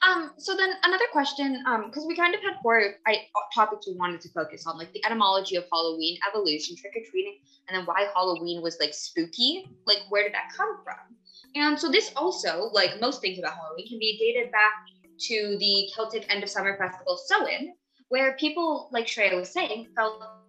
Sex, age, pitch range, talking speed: female, 10-29, 195-275 Hz, 200 wpm